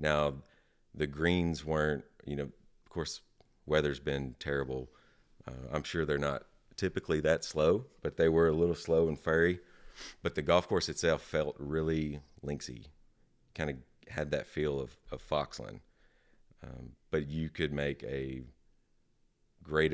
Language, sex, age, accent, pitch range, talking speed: English, male, 30-49, American, 70-80 Hz, 150 wpm